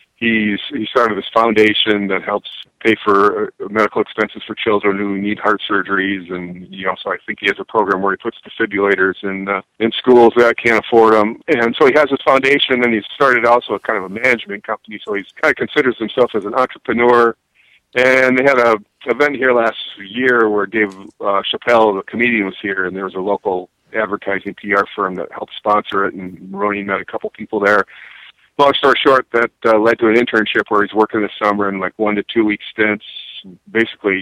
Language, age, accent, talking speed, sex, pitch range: English, 40-59, American, 210 wpm, male, 95-110 Hz